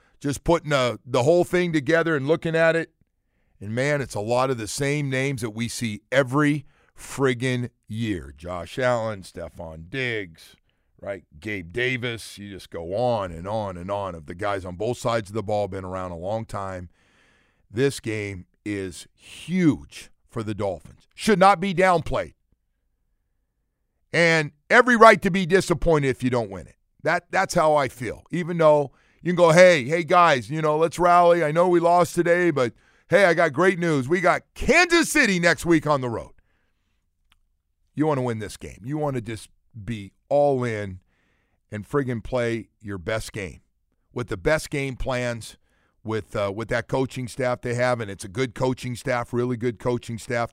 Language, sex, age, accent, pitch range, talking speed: English, male, 50-69, American, 100-150 Hz, 185 wpm